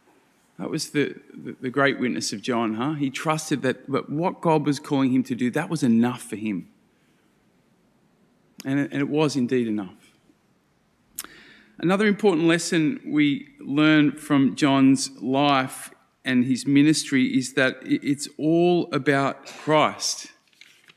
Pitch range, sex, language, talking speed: 140-170 Hz, male, English, 140 wpm